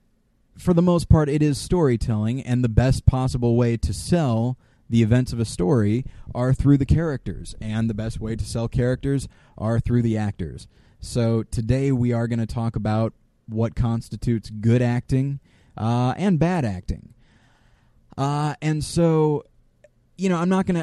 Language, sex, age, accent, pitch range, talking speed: English, male, 20-39, American, 110-130 Hz, 165 wpm